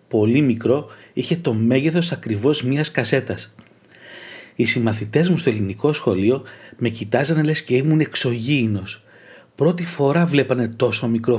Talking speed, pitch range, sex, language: 130 wpm, 115-155 Hz, male, Greek